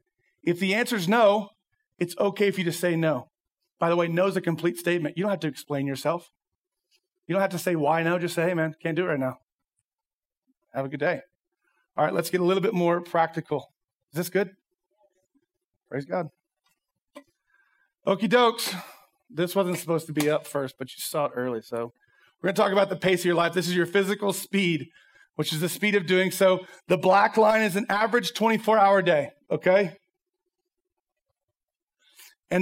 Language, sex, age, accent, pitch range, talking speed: English, male, 40-59, American, 165-205 Hz, 195 wpm